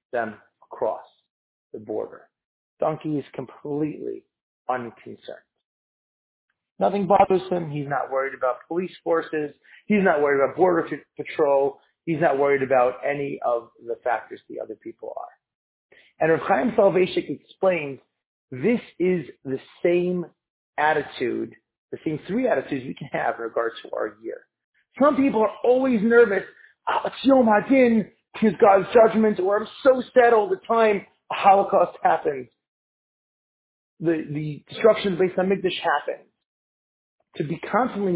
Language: English